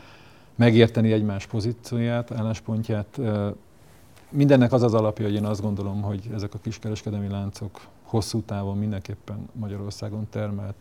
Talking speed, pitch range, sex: 120 wpm, 100-115 Hz, male